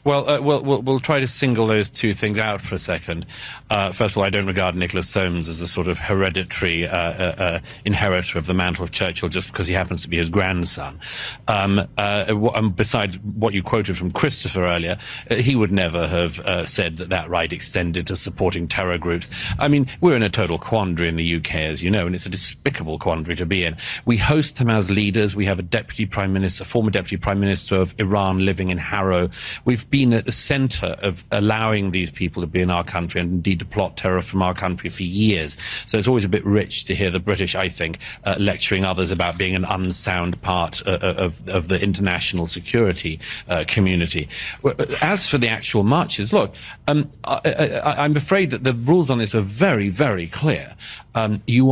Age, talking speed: 40-59, 215 wpm